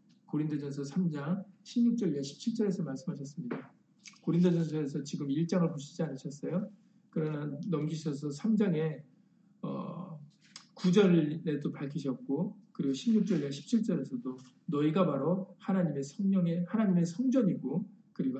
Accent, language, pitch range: native, Korean, 150-200 Hz